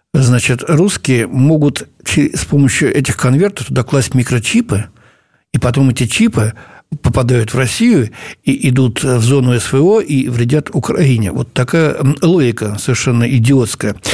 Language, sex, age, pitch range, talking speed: Russian, male, 60-79, 130-180 Hz, 125 wpm